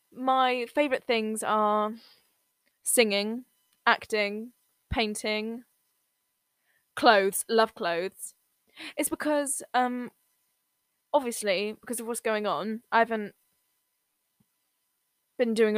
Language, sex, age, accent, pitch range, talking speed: English, female, 10-29, British, 210-260 Hz, 90 wpm